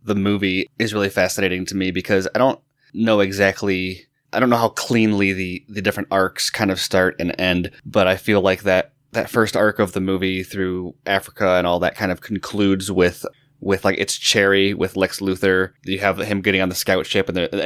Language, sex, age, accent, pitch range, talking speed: English, male, 20-39, American, 95-110 Hz, 215 wpm